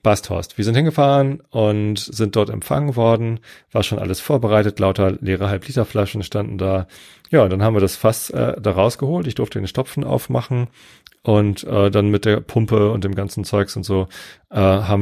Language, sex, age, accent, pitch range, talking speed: German, male, 30-49, German, 95-115 Hz, 190 wpm